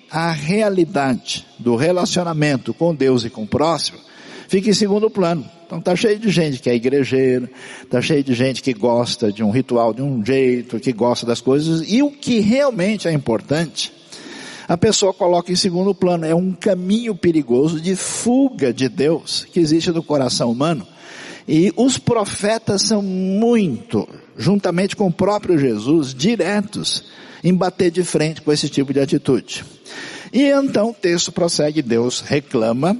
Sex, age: male, 60-79